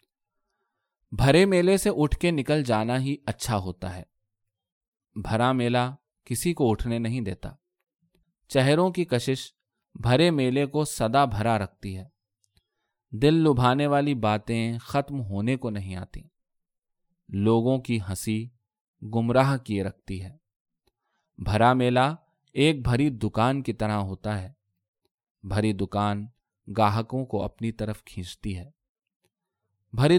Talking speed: 125 wpm